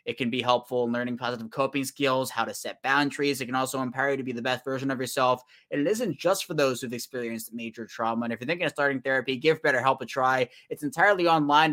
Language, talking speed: English, 250 wpm